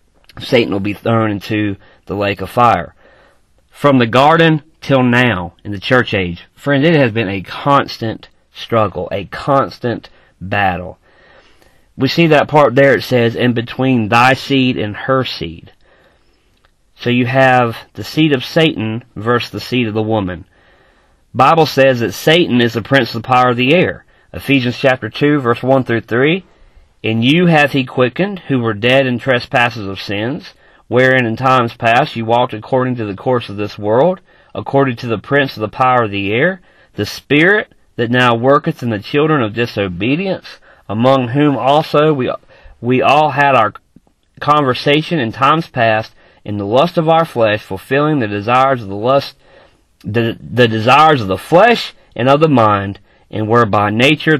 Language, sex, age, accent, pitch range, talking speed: English, male, 40-59, American, 105-140 Hz, 175 wpm